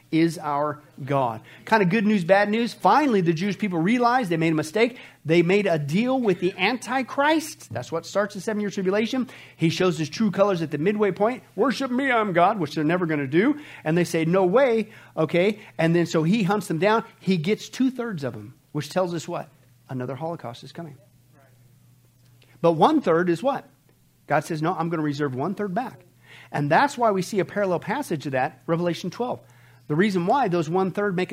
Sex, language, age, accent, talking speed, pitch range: male, English, 50-69, American, 210 wpm, 150-200 Hz